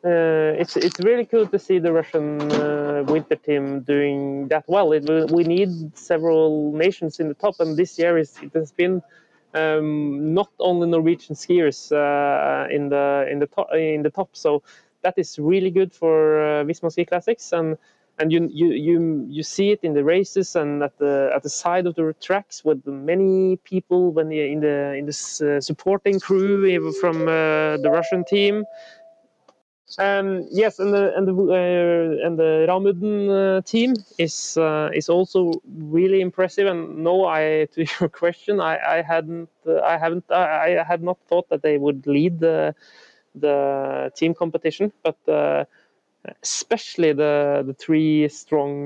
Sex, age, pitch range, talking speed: male, 30-49, 150-185 Hz, 175 wpm